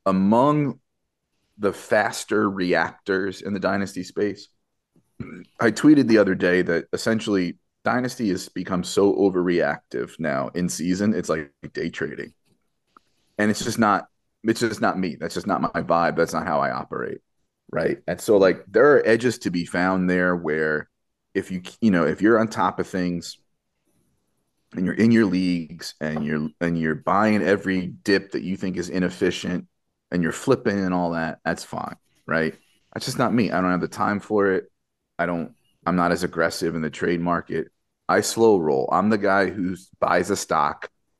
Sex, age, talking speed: male, 30-49, 180 wpm